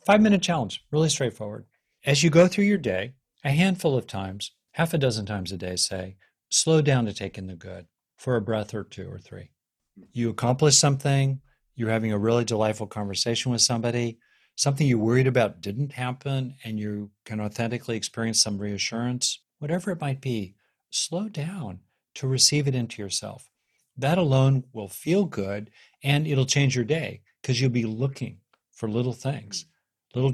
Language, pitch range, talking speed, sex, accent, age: English, 105-135 Hz, 175 wpm, male, American, 50-69